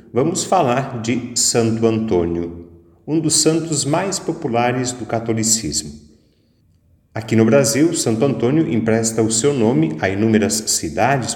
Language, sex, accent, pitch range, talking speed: Portuguese, male, Brazilian, 85-120 Hz, 125 wpm